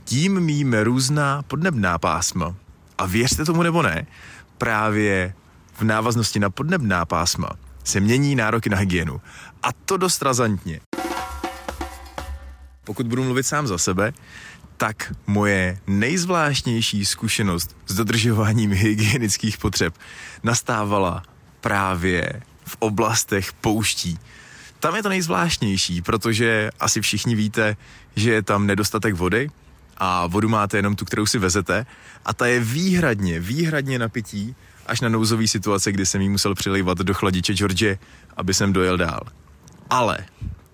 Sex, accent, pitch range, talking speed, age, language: male, native, 95-120 Hz, 130 wpm, 30-49, Czech